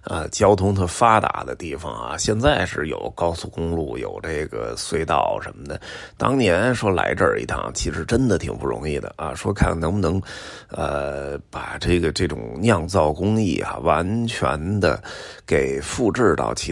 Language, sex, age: Chinese, male, 30-49